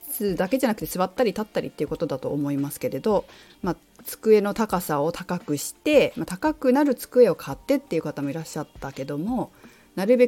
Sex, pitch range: female, 165-270 Hz